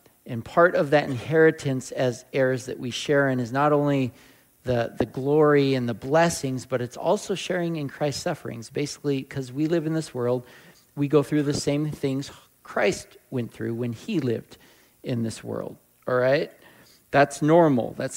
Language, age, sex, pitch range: English, 40-59, male, 125-170 Hz